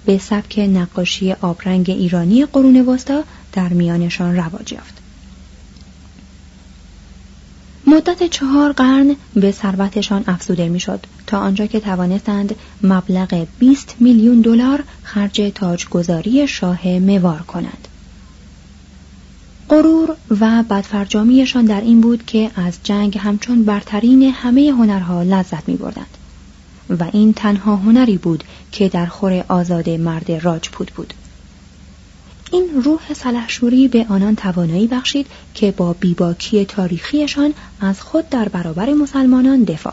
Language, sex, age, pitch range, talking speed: Persian, female, 30-49, 170-240 Hz, 115 wpm